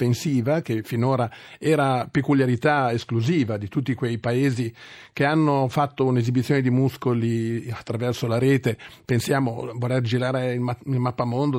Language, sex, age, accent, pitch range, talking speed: Italian, male, 40-59, native, 125-150 Hz, 125 wpm